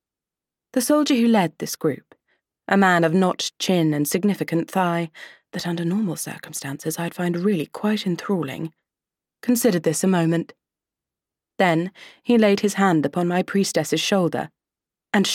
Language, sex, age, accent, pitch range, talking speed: English, female, 30-49, British, 170-215 Hz, 145 wpm